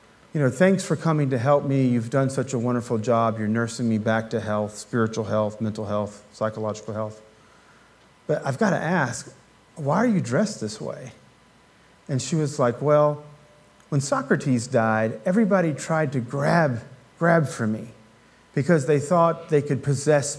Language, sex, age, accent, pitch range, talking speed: English, male, 40-59, American, 120-165 Hz, 170 wpm